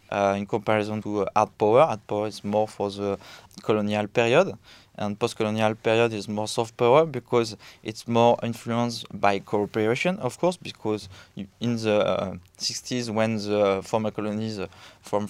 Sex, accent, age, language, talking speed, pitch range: male, French, 20-39, English, 165 wpm, 105-125 Hz